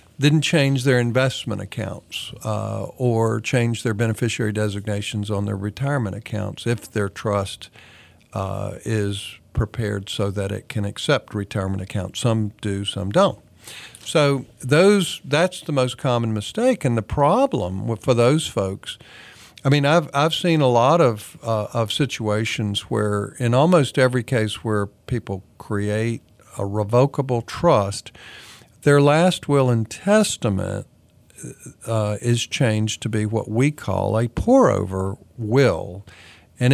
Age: 50-69